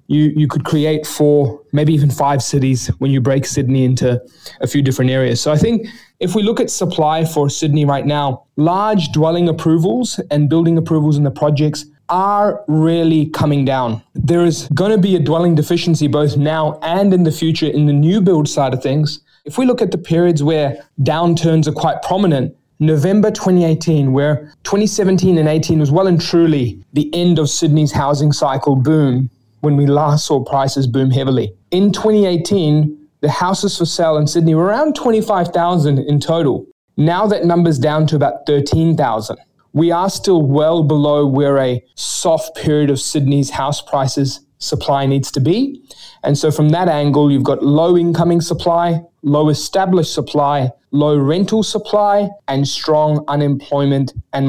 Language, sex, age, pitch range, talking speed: English, male, 20-39, 140-170 Hz, 170 wpm